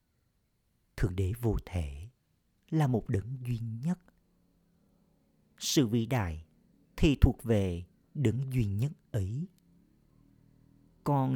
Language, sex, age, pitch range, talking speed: Vietnamese, male, 50-69, 95-140 Hz, 105 wpm